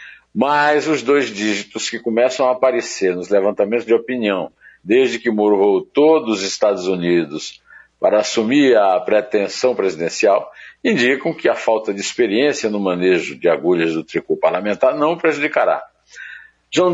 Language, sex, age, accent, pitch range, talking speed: Portuguese, male, 60-79, Brazilian, 100-160 Hz, 140 wpm